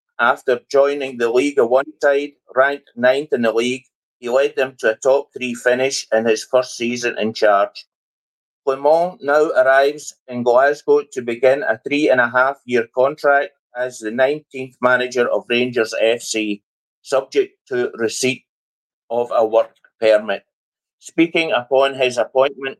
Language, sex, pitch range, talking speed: English, male, 115-145 Hz, 155 wpm